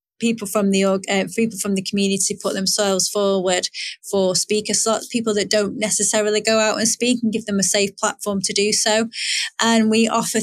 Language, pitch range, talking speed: English, 190-215 Hz, 195 wpm